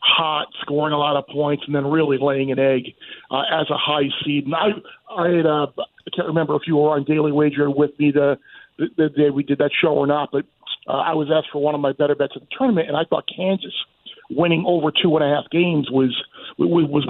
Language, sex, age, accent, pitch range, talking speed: English, male, 40-59, American, 150-165 Hz, 240 wpm